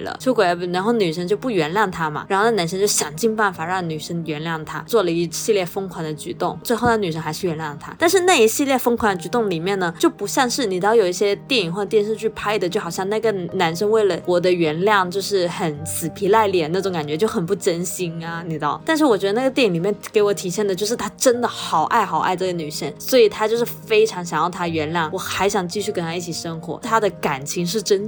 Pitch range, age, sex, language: 175-230 Hz, 20-39, female, Chinese